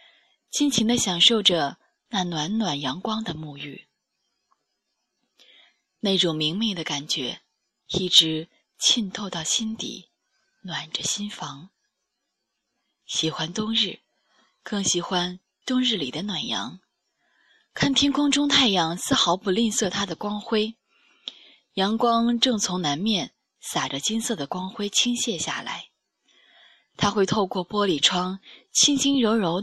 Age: 20-39